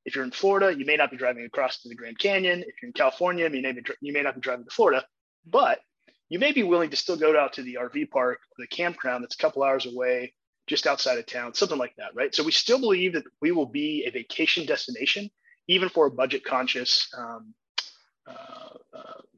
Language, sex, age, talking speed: English, male, 30-49, 230 wpm